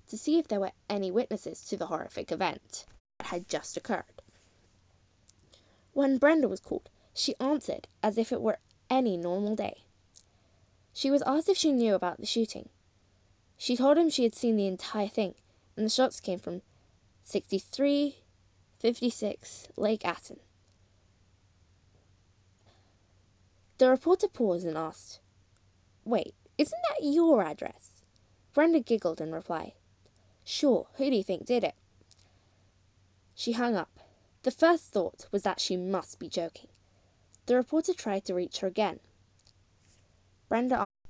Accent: British